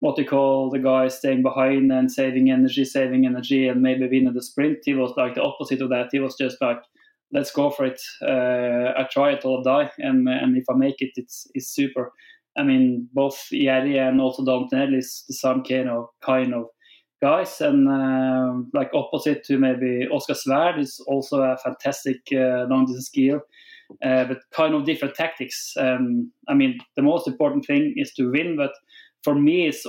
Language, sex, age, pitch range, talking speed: English, male, 20-39, 130-155 Hz, 195 wpm